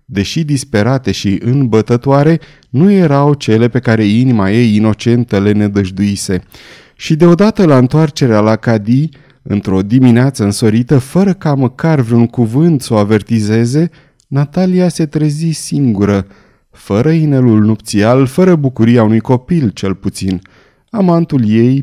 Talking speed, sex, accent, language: 125 wpm, male, native, Romanian